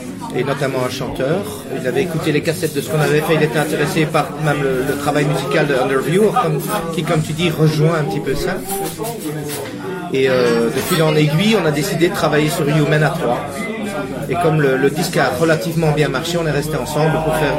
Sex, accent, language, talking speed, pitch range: male, French, French, 220 wpm, 145-180 Hz